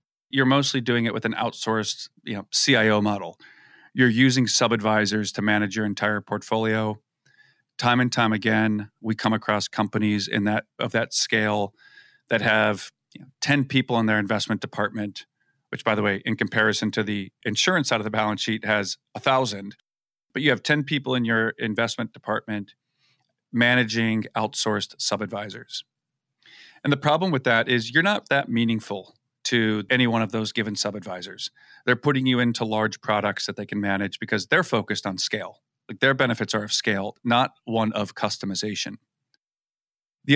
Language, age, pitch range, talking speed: English, 40-59, 105-125 Hz, 170 wpm